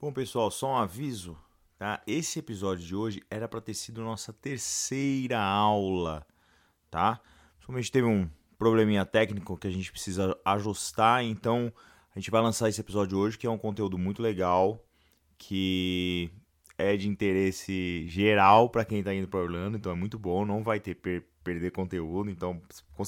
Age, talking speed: 20-39, 175 wpm